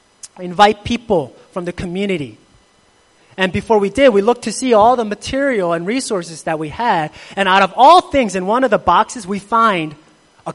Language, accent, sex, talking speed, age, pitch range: English, American, male, 195 wpm, 30-49, 185-240 Hz